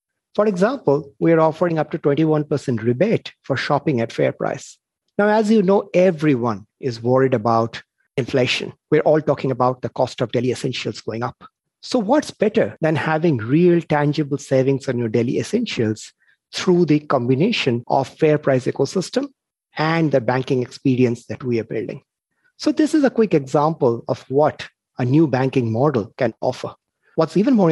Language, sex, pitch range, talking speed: English, male, 125-170 Hz, 170 wpm